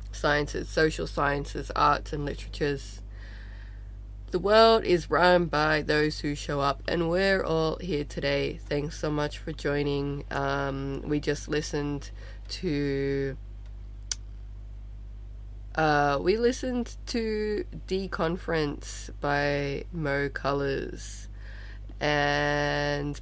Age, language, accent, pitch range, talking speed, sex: 20-39, English, Australian, 100-165 Hz, 100 wpm, female